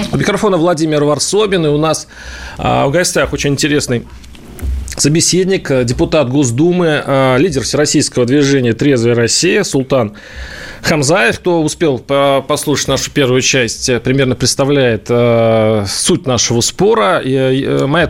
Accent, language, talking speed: native, Russian, 115 wpm